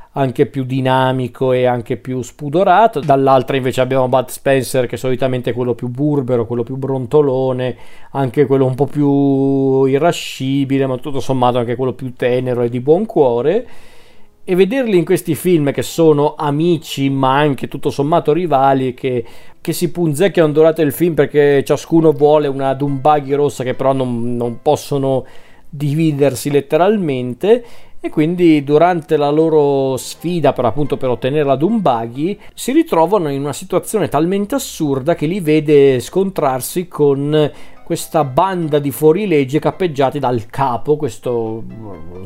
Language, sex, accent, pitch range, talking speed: Italian, male, native, 125-155 Hz, 150 wpm